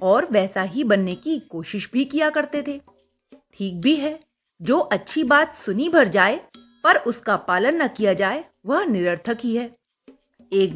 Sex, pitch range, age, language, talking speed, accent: female, 205-285 Hz, 30-49, Hindi, 165 wpm, native